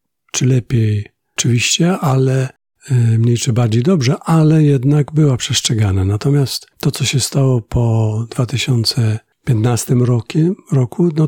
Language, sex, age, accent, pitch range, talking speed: Polish, male, 50-69, native, 115-140 Hz, 110 wpm